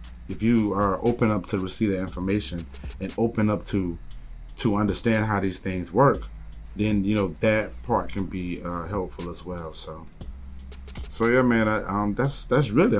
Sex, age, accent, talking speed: male, 30-49, American, 180 wpm